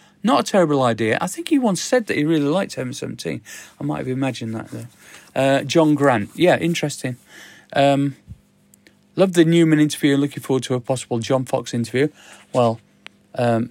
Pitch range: 120-155 Hz